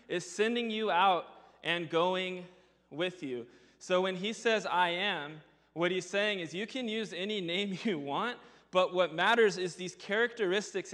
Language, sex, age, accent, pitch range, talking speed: English, male, 20-39, American, 165-195 Hz, 170 wpm